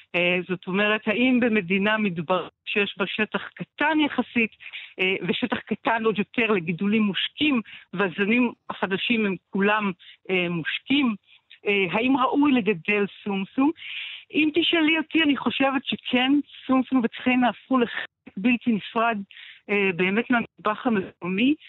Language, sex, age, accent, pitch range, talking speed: Hebrew, female, 60-79, native, 195-250 Hz, 125 wpm